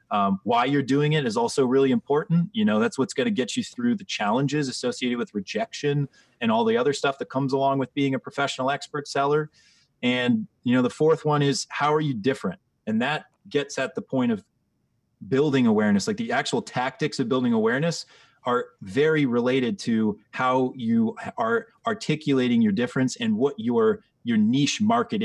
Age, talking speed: 30-49, 190 wpm